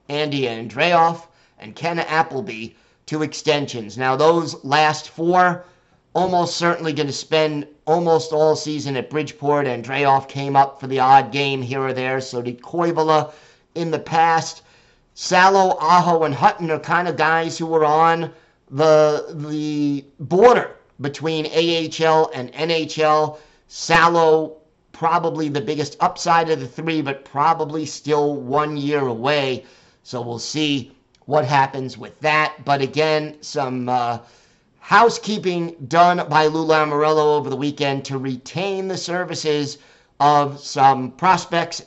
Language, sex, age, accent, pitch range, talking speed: English, male, 50-69, American, 140-165 Hz, 135 wpm